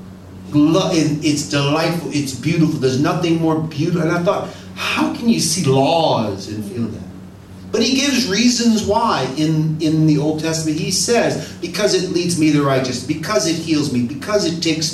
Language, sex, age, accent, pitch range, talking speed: English, male, 30-49, American, 125-165 Hz, 175 wpm